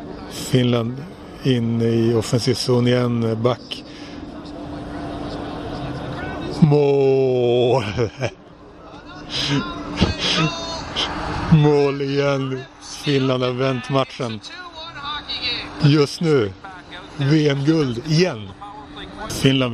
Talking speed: 60 wpm